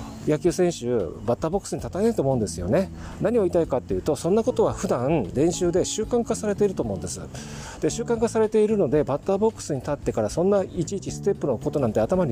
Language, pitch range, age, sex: Japanese, 135-200 Hz, 40-59, male